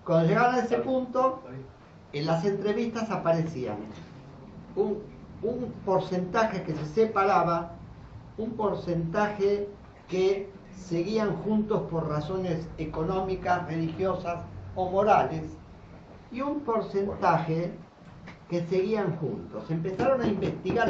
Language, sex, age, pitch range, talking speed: Spanish, male, 50-69, 155-200 Hz, 100 wpm